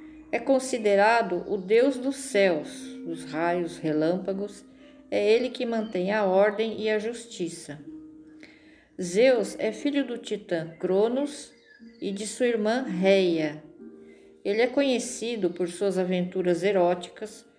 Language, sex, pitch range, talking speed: Portuguese, female, 175-230 Hz, 125 wpm